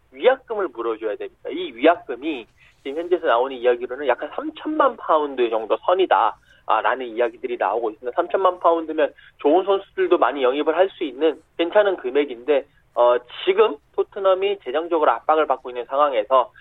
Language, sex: Korean, male